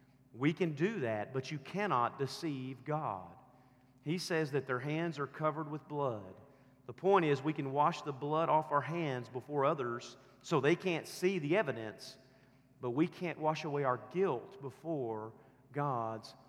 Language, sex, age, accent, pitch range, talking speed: English, male, 40-59, American, 125-150 Hz, 165 wpm